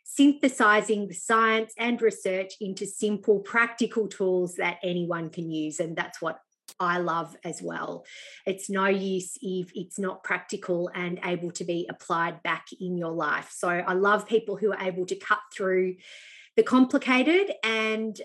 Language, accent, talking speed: English, Australian, 160 wpm